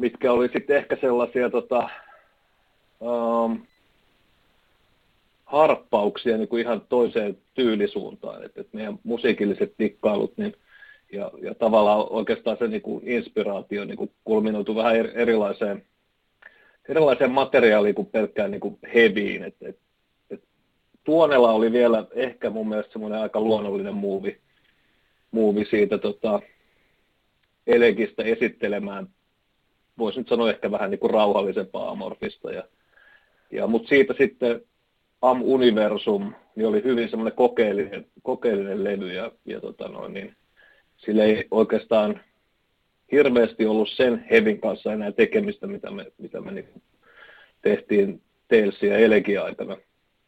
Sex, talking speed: male, 115 wpm